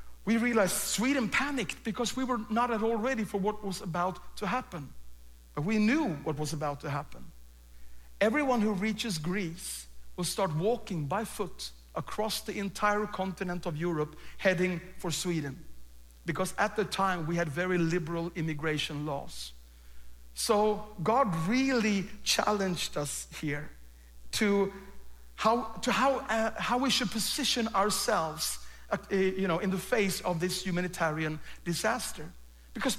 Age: 60-79